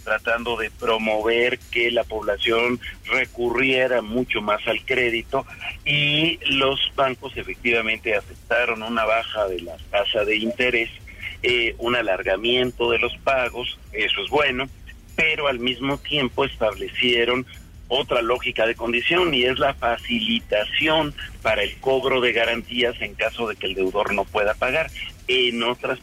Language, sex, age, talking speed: Spanish, male, 50-69, 140 wpm